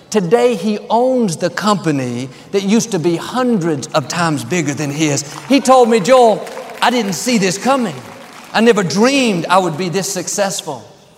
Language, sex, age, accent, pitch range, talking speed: English, male, 50-69, American, 165-230 Hz, 170 wpm